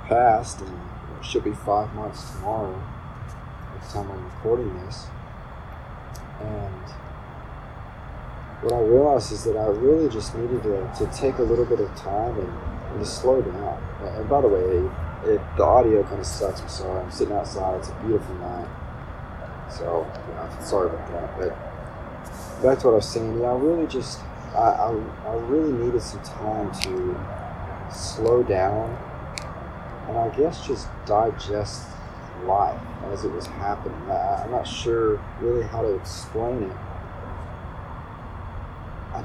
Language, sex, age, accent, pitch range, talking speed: English, male, 30-49, American, 90-120 Hz, 150 wpm